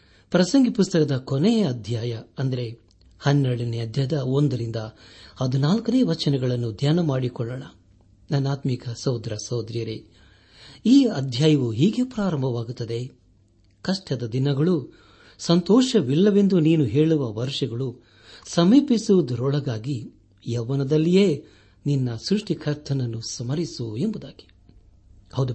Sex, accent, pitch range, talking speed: male, native, 115-155 Hz, 75 wpm